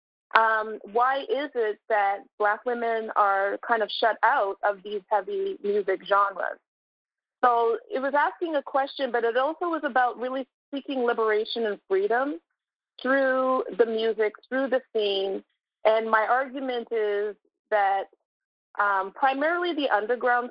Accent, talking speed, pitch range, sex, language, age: American, 140 wpm, 210-265 Hz, female, English, 30-49